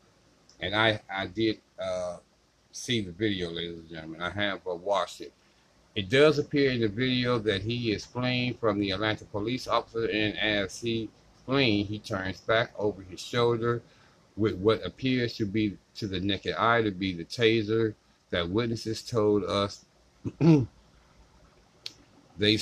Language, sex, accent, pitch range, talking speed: English, male, American, 90-110 Hz, 155 wpm